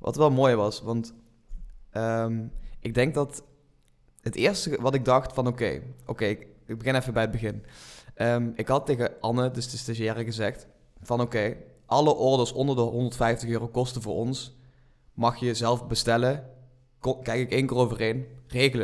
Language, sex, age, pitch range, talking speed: Dutch, male, 20-39, 110-125 Hz, 180 wpm